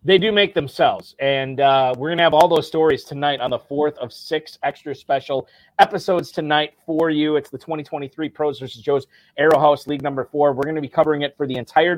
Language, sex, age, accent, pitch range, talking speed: English, male, 30-49, American, 125-150 Hz, 225 wpm